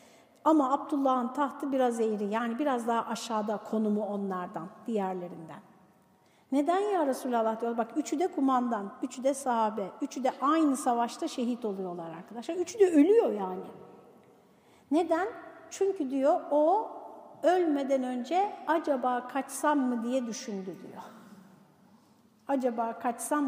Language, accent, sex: Turkish, native, female